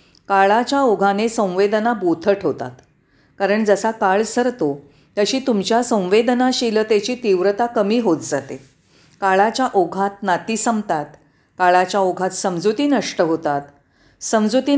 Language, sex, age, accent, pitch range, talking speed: Marathi, female, 40-59, native, 170-235 Hz, 100 wpm